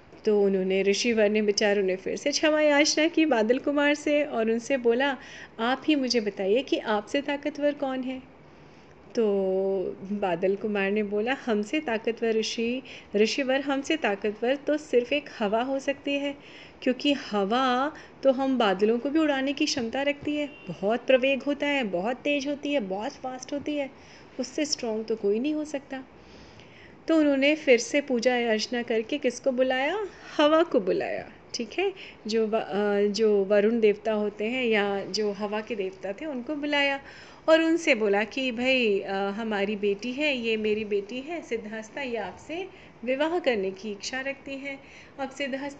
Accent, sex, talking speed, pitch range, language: native, female, 165 wpm, 215-285 Hz, Hindi